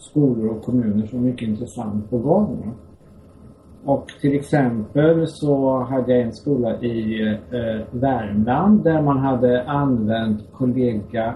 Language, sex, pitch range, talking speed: Swedish, male, 110-140 Hz, 130 wpm